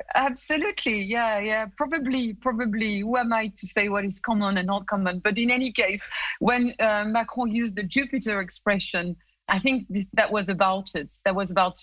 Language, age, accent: English, 40-59, French